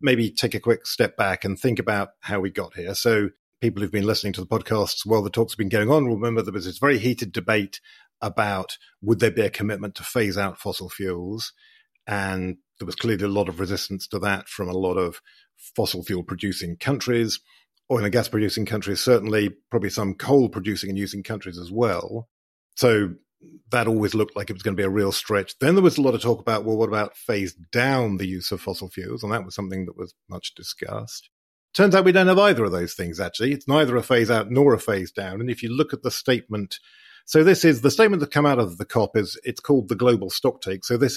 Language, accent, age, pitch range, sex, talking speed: English, British, 40-59, 95-115 Hz, male, 240 wpm